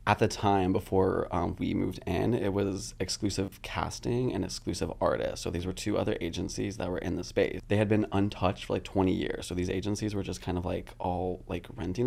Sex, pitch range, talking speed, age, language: male, 90-110 Hz, 225 wpm, 20-39, English